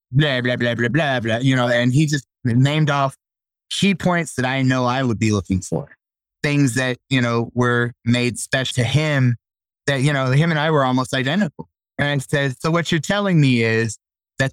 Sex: male